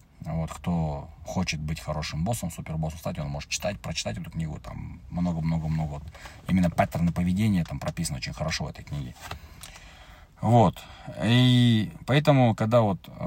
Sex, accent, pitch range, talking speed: male, native, 80-100 Hz, 140 wpm